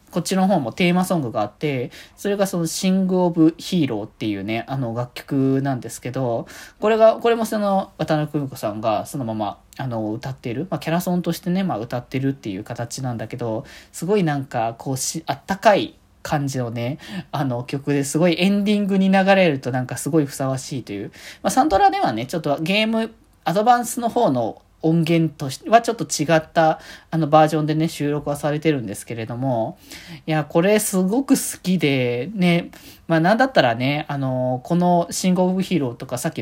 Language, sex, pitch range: Japanese, male, 125-175 Hz